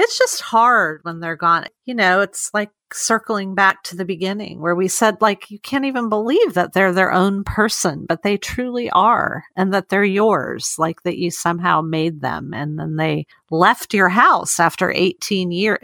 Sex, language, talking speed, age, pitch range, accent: female, English, 195 wpm, 40-59, 170-205 Hz, American